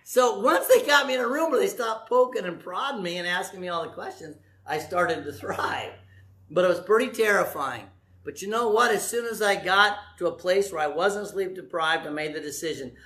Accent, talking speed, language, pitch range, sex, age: American, 235 wpm, English, 175-235 Hz, male, 50-69